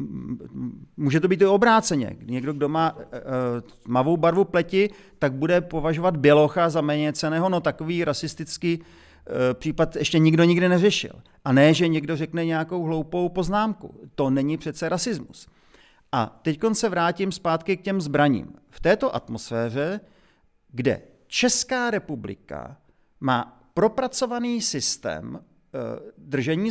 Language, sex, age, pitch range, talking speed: Czech, male, 40-59, 140-185 Hz, 125 wpm